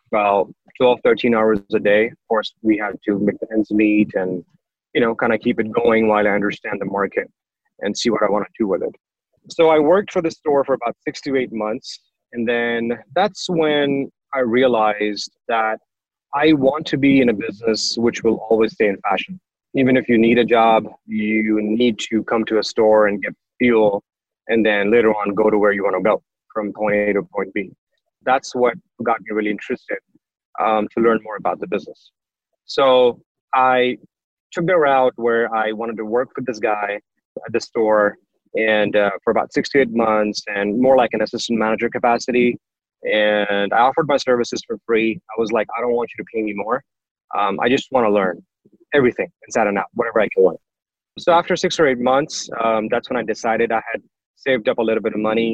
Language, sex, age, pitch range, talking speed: English, male, 30-49, 110-125 Hz, 215 wpm